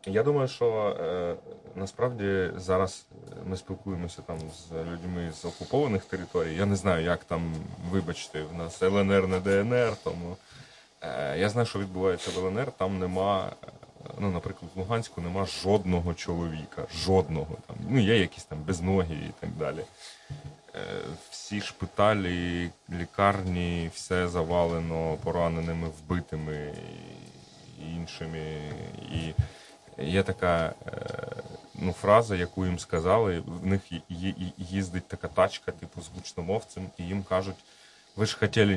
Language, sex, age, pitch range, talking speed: Ukrainian, male, 30-49, 85-100 Hz, 120 wpm